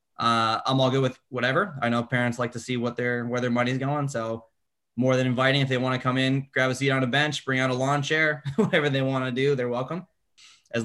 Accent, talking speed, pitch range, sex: American, 260 wpm, 115-130 Hz, male